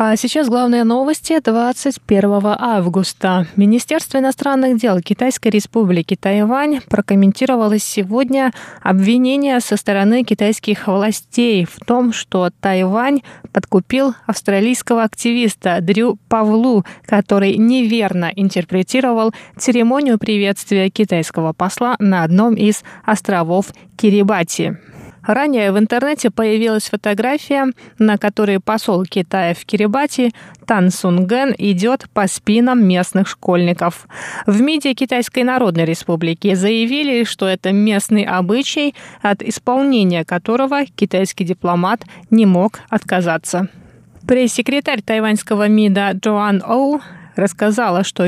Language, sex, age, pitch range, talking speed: Russian, female, 20-39, 190-240 Hz, 105 wpm